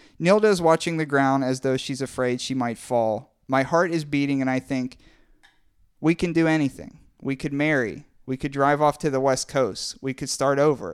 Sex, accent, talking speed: male, American, 210 wpm